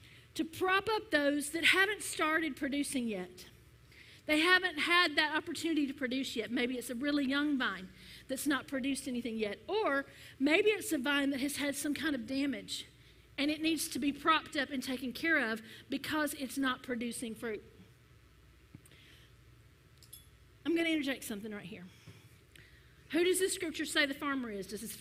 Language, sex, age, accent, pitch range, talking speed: English, female, 40-59, American, 245-310 Hz, 175 wpm